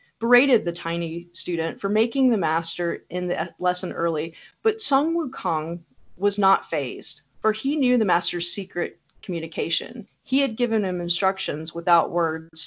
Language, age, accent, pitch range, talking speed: English, 30-49, American, 170-220 Hz, 150 wpm